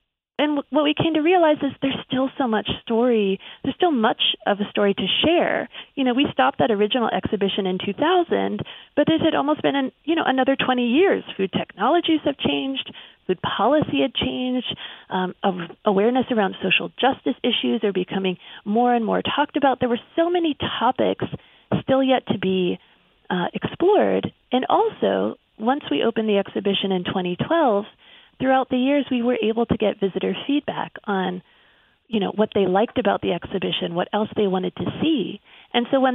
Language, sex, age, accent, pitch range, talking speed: English, female, 30-49, American, 200-270 Hz, 180 wpm